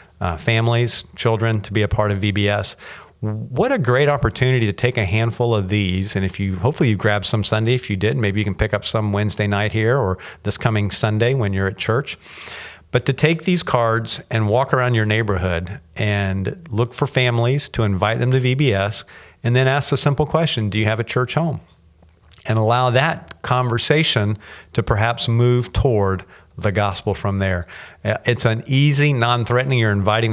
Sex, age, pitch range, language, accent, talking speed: male, 50-69, 100-120 Hz, English, American, 190 wpm